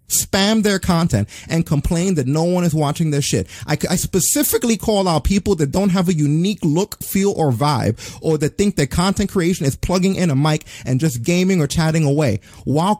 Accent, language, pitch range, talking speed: American, English, 130-195 Hz, 210 wpm